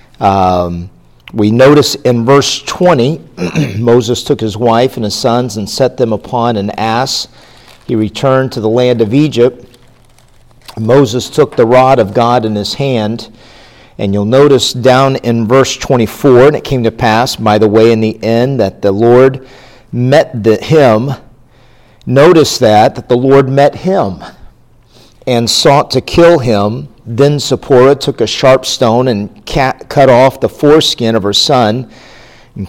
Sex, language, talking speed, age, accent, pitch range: male, English, 155 wpm, 50-69, American, 115-135 Hz